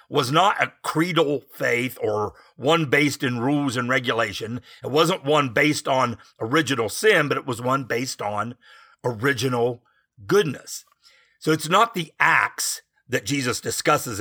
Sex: male